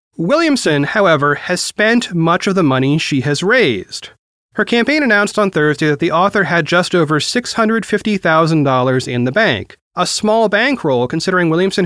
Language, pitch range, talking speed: English, 145-200 Hz, 155 wpm